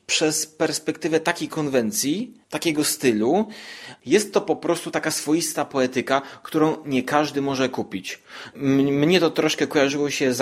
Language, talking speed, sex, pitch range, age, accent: Polish, 140 wpm, male, 130-175 Hz, 30-49, native